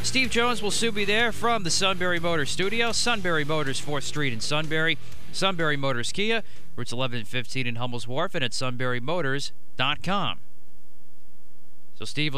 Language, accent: English, American